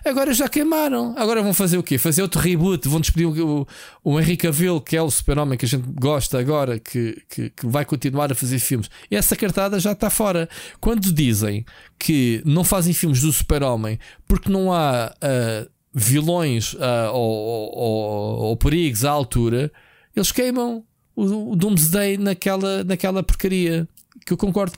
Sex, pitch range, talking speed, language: male, 130-185 Hz, 170 wpm, Portuguese